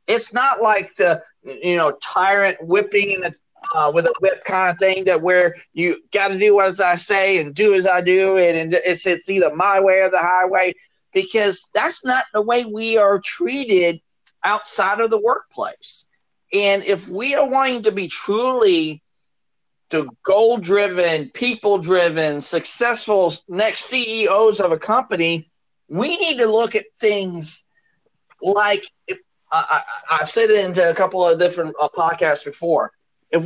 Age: 40-59